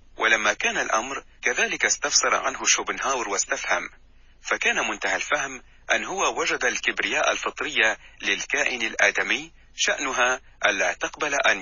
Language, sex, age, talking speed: Arabic, male, 40-59, 120 wpm